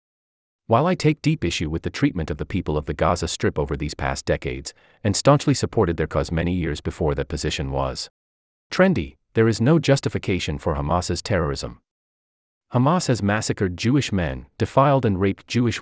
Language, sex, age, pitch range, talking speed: English, male, 30-49, 75-115 Hz, 180 wpm